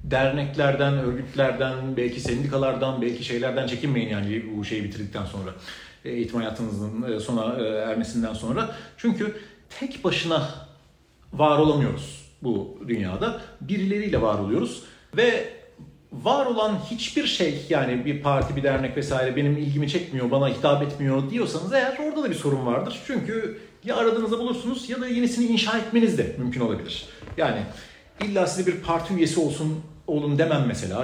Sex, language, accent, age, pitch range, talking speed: male, Turkish, native, 40-59, 120-180 Hz, 140 wpm